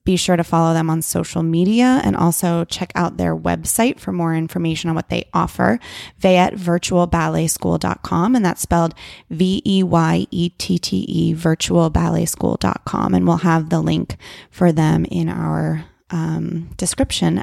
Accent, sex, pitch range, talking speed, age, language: American, female, 165-185 Hz, 130 wpm, 20-39, English